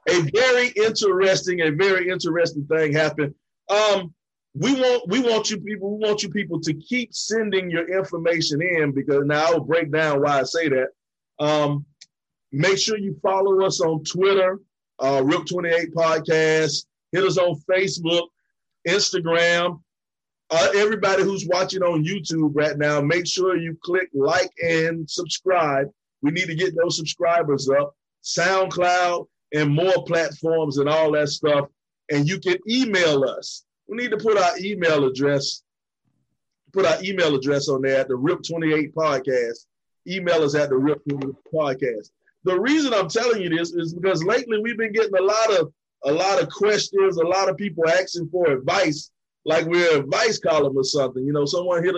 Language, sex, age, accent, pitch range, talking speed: English, male, 30-49, American, 155-190 Hz, 165 wpm